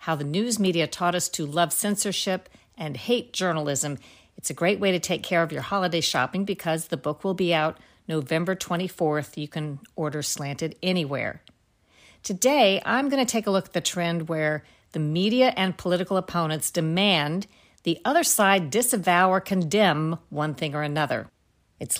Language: English